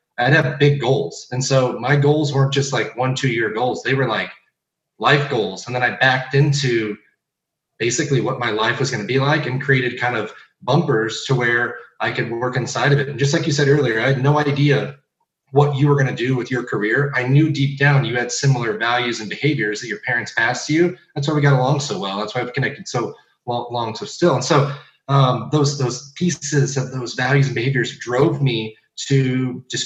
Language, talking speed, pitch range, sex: English, 225 wpm, 120-140 Hz, male